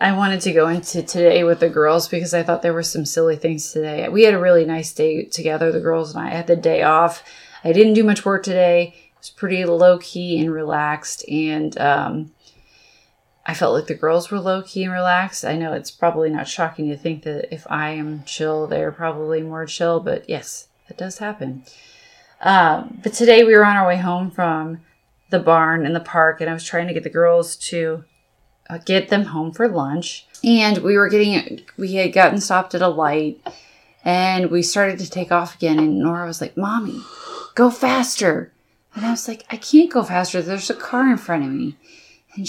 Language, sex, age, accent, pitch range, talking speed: English, female, 20-39, American, 160-200 Hz, 210 wpm